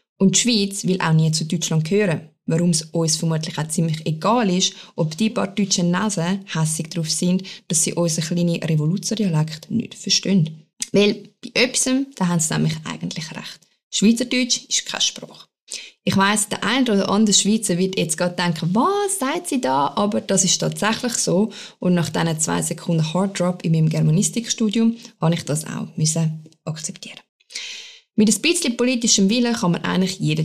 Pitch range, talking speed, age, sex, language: 165-220 Hz, 170 wpm, 20-39, female, German